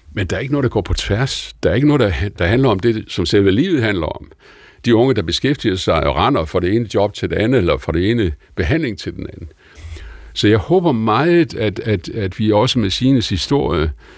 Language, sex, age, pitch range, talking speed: Danish, male, 60-79, 90-120 Hz, 235 wpm